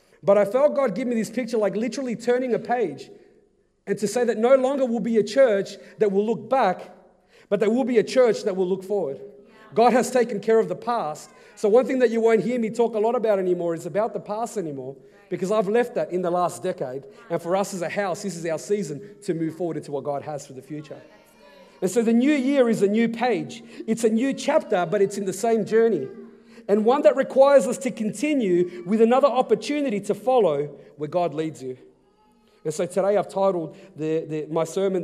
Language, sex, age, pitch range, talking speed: English, male, 40-59, 175-230 Hz, 230 wpm